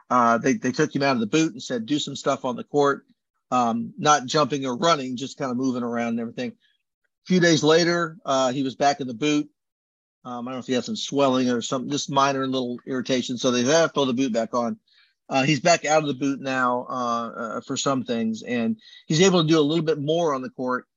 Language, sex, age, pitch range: English, male, 40-59, 125-165 Hz